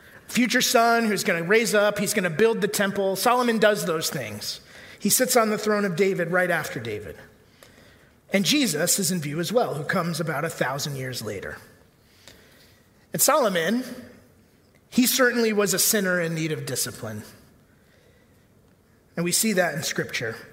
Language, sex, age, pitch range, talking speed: English, male, 30-49, 150-215 Hz, 170 wpm